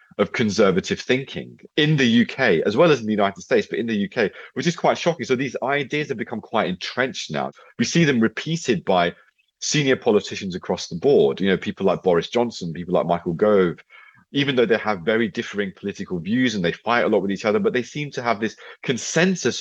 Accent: British